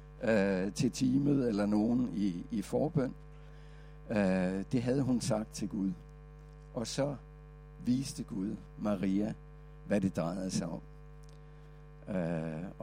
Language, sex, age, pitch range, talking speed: Danish, male, 60-79, 105-150 Hz, 115 wpm